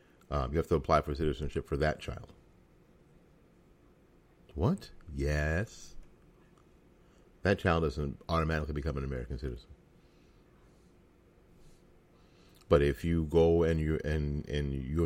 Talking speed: 115 wpm